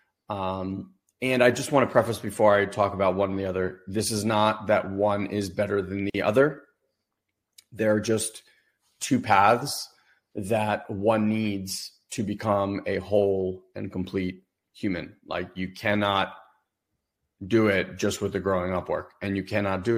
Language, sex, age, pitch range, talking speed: English, male, 30-49, 95-110 Hz, 165 wpm